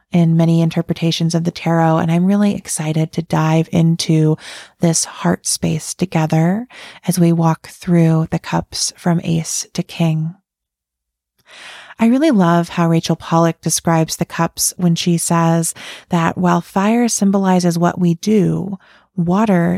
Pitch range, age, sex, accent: 165-195 Hz, 30-49, female, American